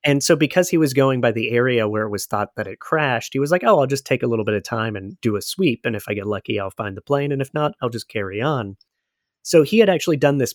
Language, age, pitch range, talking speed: English, 30-49, 105-135 Hz, 305 wpm